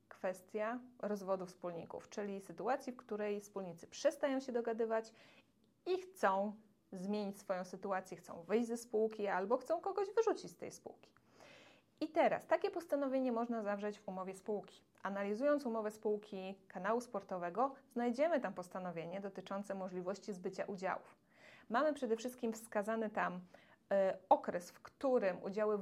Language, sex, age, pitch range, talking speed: Polish, female, 20-39, 195-245 Hz, 135 wpm